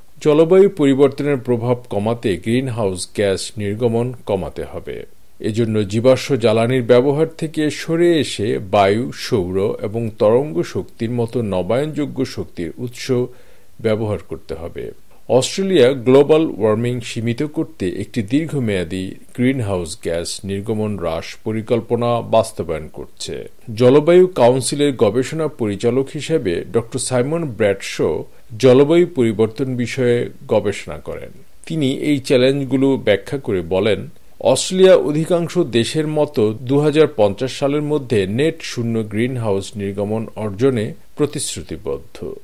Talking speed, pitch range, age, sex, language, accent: 105 wpm, 110-145 Hz, 50-69, male, Bengali, native